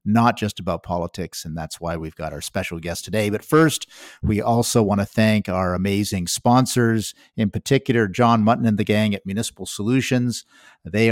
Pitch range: 95-115 Hz